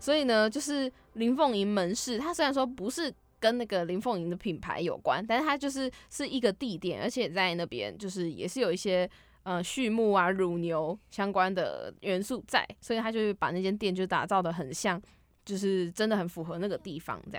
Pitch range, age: 190-250 Hz, 20-39